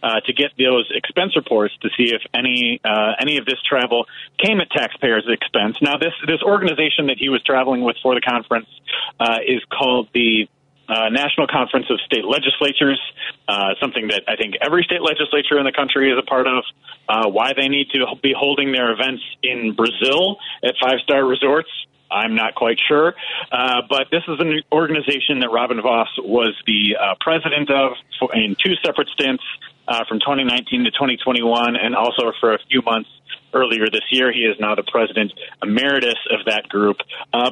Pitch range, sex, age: 120-155 Hz, male, 40-59